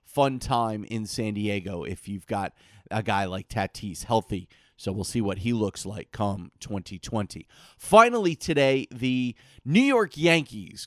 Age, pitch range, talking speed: 30-49, 110-145 Hz, 155 wpm